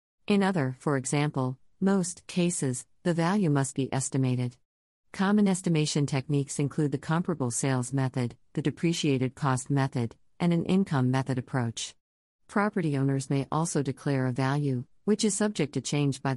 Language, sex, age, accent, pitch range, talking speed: English, female, 50-69, American, 130-160 Hz, 150 wpm